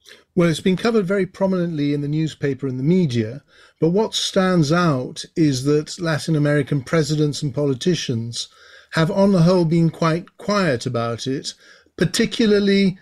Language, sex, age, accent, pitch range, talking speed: English, male, 50-69, British, 140-170 Hz, 150 wpm